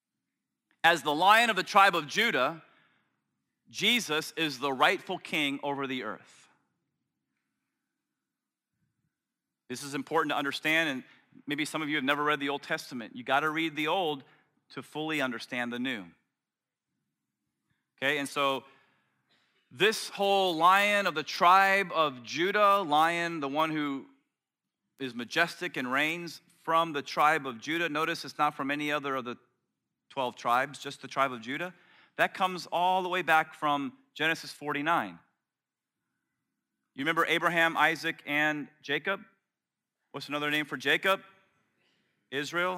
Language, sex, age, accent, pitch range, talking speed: English, male, 30-49, American, 140-175 Hz, 145 wpm